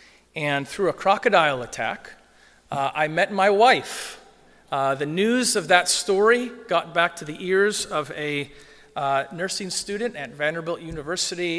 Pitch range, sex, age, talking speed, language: 150-190 Hz, male, 40-59, 150 wpm, English